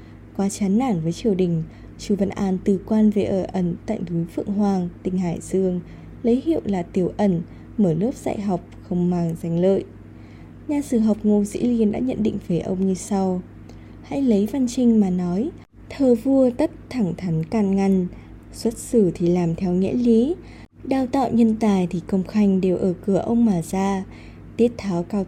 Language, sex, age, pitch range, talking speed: Vietnamese, female, 20-39, 180-230 Hz, 195 wpm